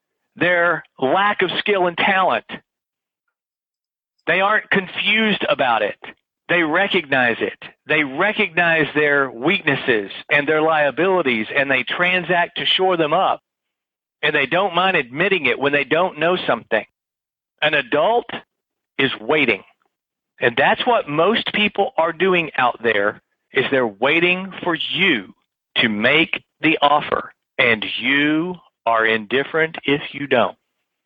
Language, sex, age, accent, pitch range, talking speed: English, male, 50-69, American, 140-180 Hz, 135 wpm